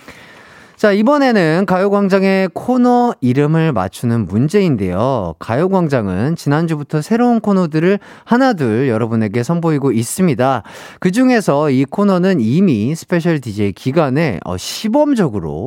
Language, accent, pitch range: Korean, native, 125-200 Hz